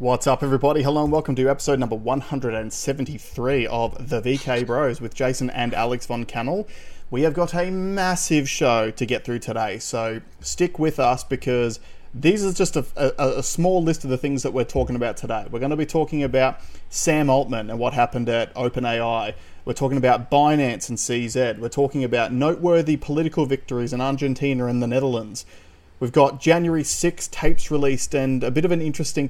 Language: English